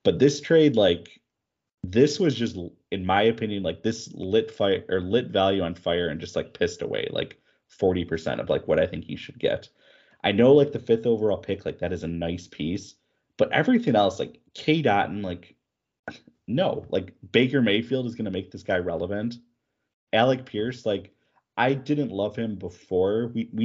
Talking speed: 190 wpm